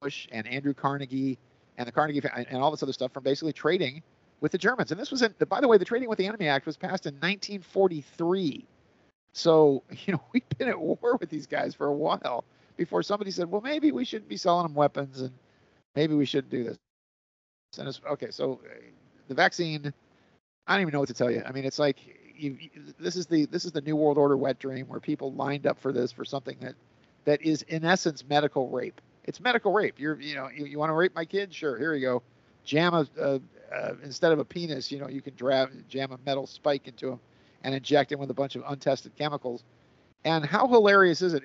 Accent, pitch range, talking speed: American, 135-175 Hz, 220 wpm